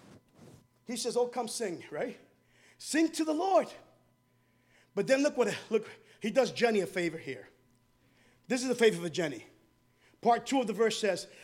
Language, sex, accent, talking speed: English, male, American, 175 wpm